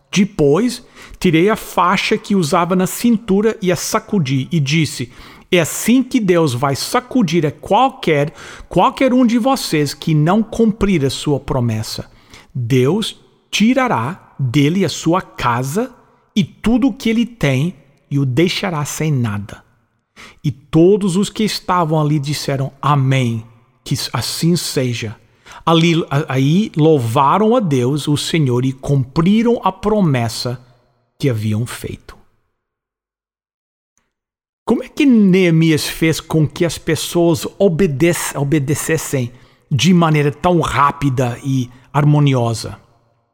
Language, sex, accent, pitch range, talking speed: English, male, Brazilian, 135-190 Hz, 120 wpm